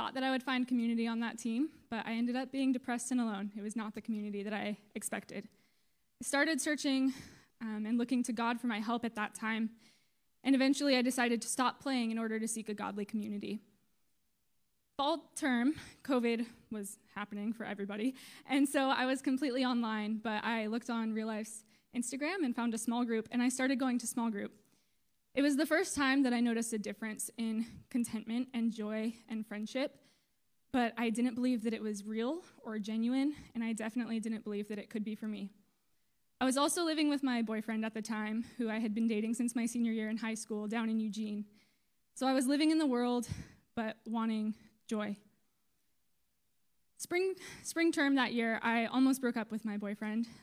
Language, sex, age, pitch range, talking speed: English, female, 10-29, 220-255 Hz, 200 wpm